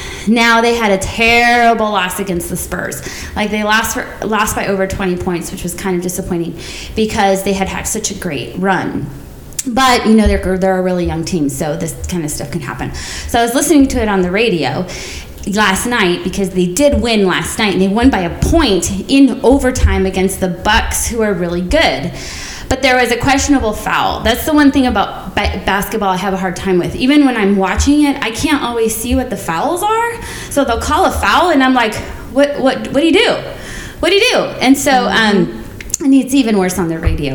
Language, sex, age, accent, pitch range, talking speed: English, female, 20-39, American, 190-265 Hz, 225 wpm